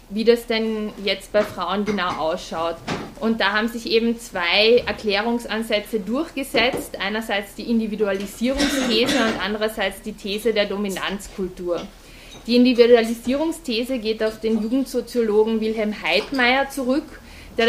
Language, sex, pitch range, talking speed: German, female, 205-235 Hz, 120 wpm